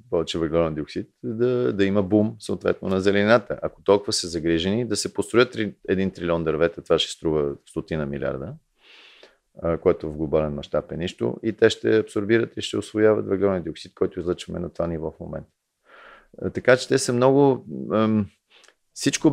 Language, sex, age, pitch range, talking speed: Bulgarian, male, 40-59, 85-110 Hz, 160 wpm